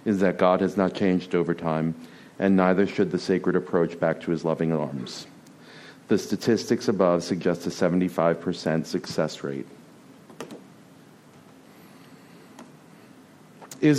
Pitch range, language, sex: 95-125 Hz, English, male